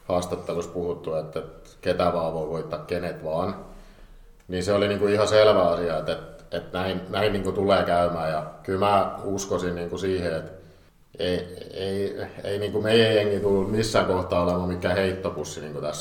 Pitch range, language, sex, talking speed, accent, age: 85-100 Hz, Finnish, male, 170 wpm, native, 50-69